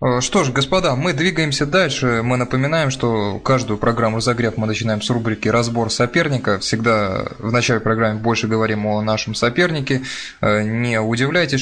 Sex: male